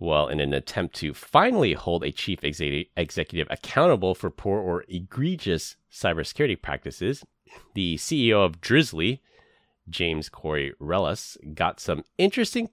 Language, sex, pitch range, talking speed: English, male, 75-110 Hz, 125 wpm